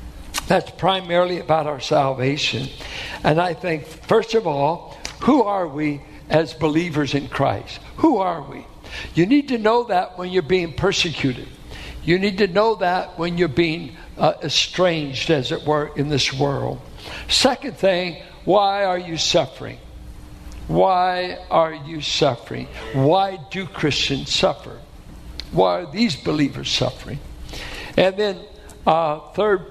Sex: male